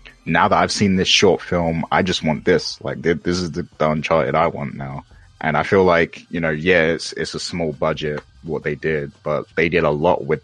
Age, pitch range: 20-39, 75-85 Hz